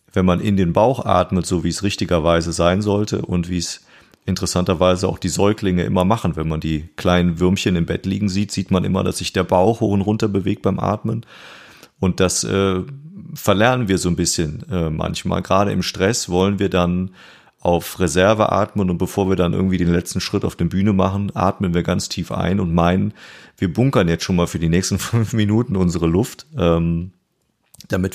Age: 30-49